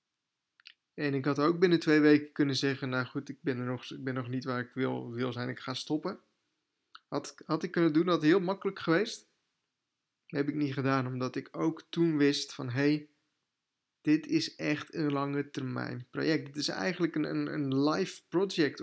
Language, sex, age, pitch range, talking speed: Dutch, male, 20-39, 130-150 Hz, 200 wpm